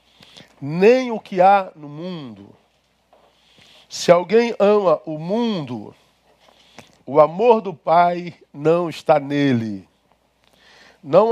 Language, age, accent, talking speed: Portuguese, 50-69, Brazilian, 100 wpm